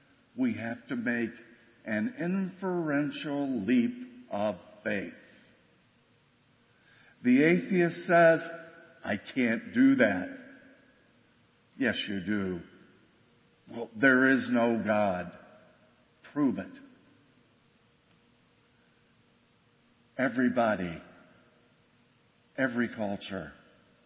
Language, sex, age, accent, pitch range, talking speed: English, male, 50-69, American, 100-135 Hz, 70 wpm